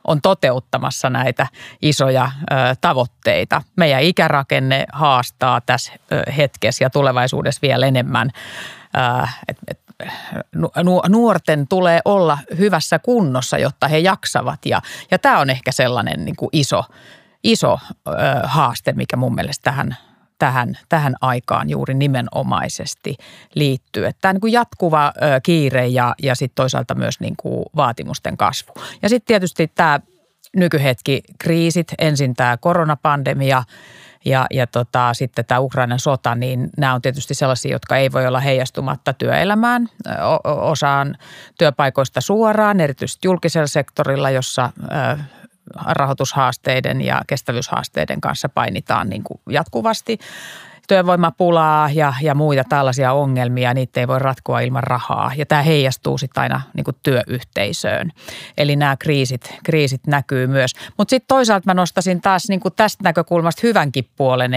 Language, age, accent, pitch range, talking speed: Finnish, 30-49, native, 130-170 Hz, 125 wpm